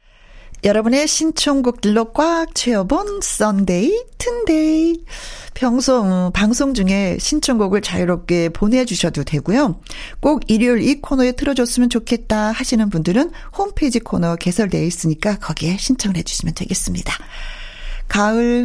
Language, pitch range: Korean, 175-245 Hz